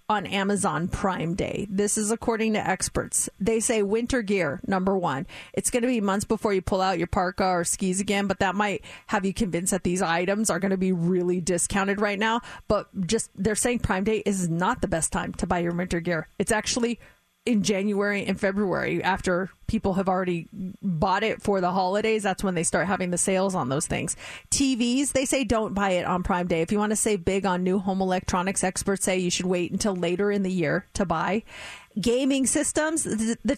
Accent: American